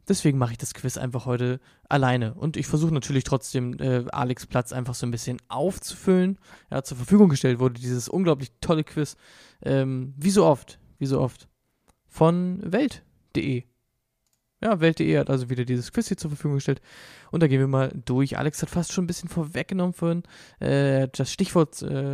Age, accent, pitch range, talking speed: 20-39, German, 125-160 Hz, 185 wpm